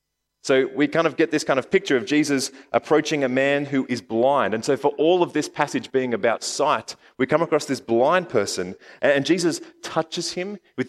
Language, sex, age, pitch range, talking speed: English, male, 30-49, 125-170 Hz, 210 wpm